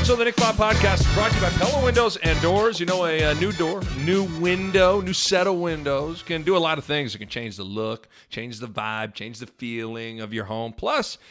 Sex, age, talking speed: male, 40-59, 250 wpm